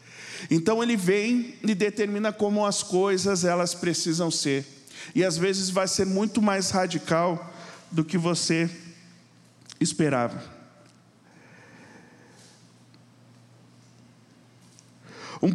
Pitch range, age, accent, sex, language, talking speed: 135-195 Hz, 50-69, Brazilian, male, Portuguese, 95 wpm